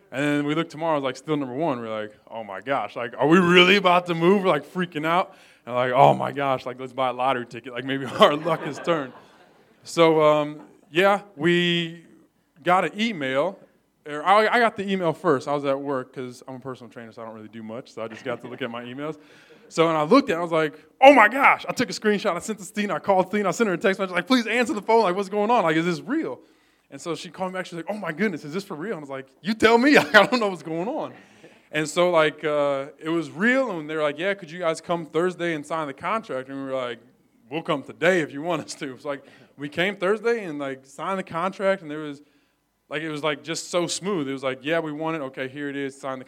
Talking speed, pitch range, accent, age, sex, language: 280 wpm, 140-185 Hz, American, 20-39, male, English